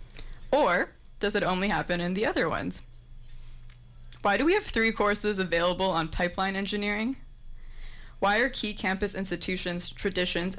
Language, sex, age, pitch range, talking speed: English, female, 20-39, 165-190 Hz, 140 wpm